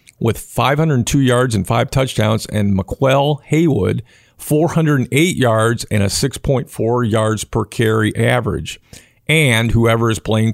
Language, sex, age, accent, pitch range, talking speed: English, male, 50-69, American, 110-135 Hz, 125 wpm